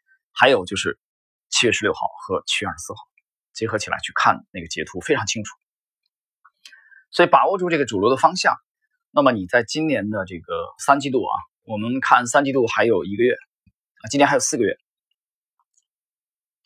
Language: Chinese